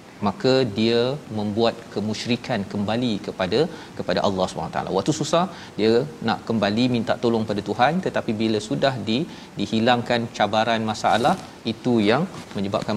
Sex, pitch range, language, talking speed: male, 110-125 Hz, Malayalam, 135 wpm